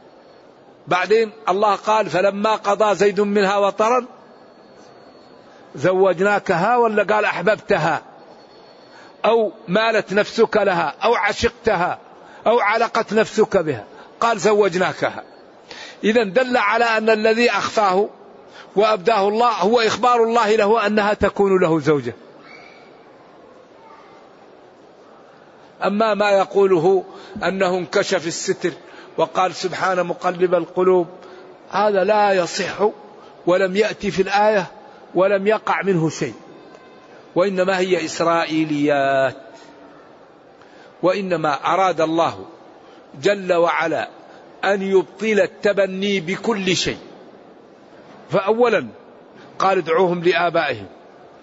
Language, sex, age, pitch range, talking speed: Arabic, male, 50-69, 185-220 Hz, 90 wpm